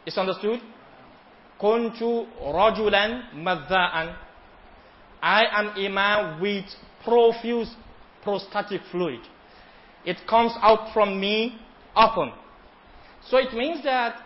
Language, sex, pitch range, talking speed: English, male, 175-220 Hz, 95 wpm